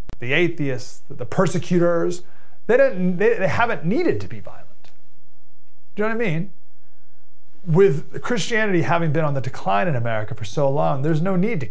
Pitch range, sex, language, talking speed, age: 130-170 Hz, male, English, 180 wpm, 30-49